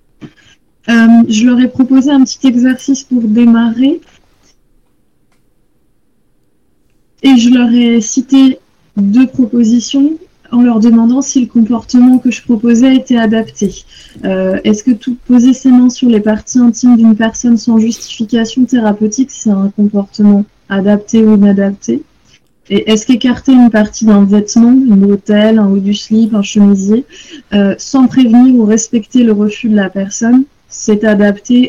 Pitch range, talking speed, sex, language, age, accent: 205-250 Hz, 145 wpm, female, French, 20-39, French